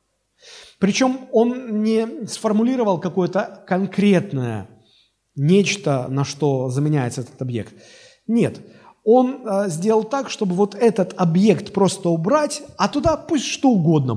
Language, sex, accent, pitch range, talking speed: Russian, male, native, 120-195 Hz, 120 wpm